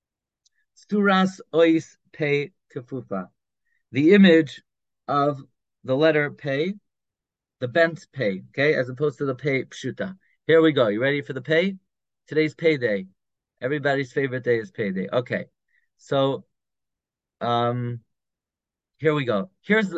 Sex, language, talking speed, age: male, English, 115 wpm, 30-49